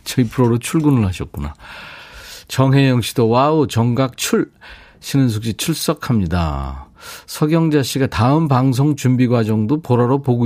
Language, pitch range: Korean, 100-145 Hz